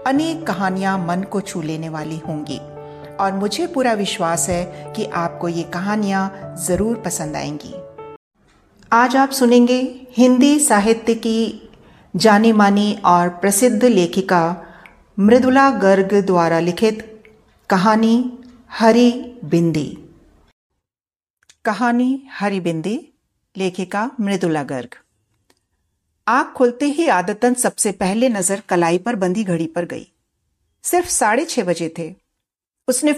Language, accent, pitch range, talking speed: Hindi, native, 170-240 Hz, 115 wpm